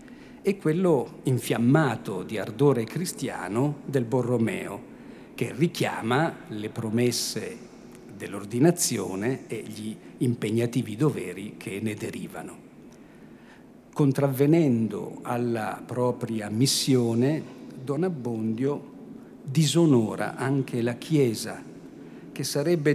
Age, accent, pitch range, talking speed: 50-69, native, 115-145 Hz, 85 wpm